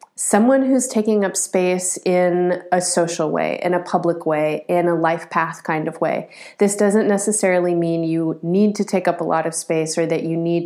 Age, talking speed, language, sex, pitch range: 30-49, 210 wpm, English, female, 170-205 Hz